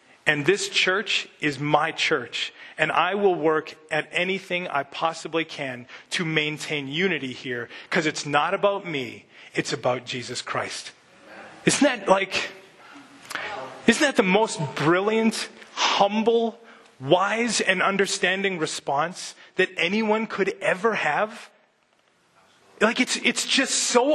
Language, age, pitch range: English, 30-49, 155-210 Hz